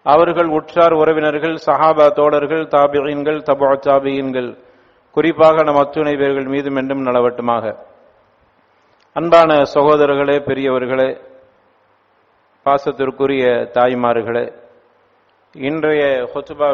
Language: English